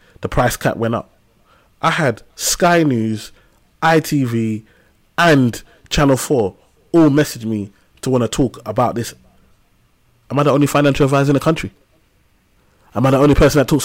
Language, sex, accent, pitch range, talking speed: English, male, British, 110-145 Hz, 165 wpm